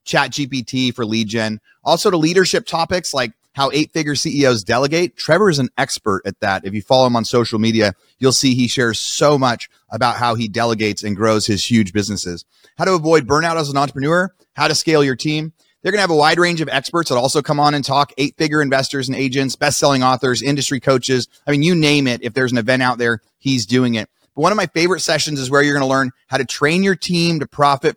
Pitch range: 125-155 Hz